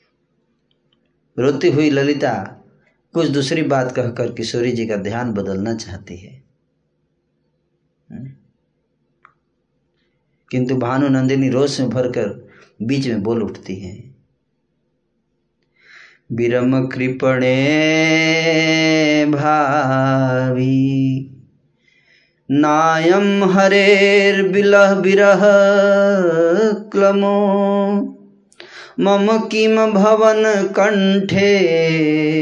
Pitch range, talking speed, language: 125-175 Hz, 70 wpm, Hindi